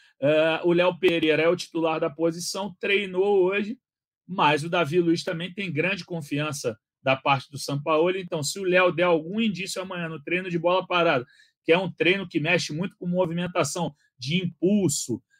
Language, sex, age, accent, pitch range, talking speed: Portuguese, male, 40-59, Brazilian, 150-180 Hz, 185 wpm